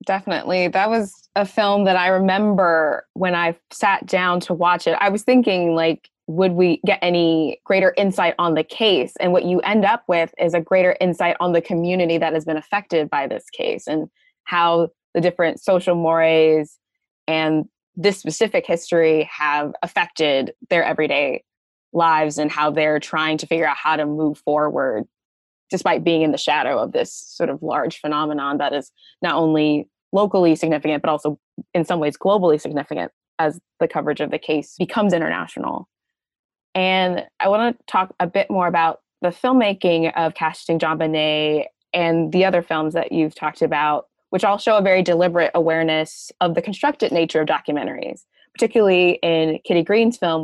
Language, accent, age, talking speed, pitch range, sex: English, American, 20-39, 175 wpm, 155-185 Hz, female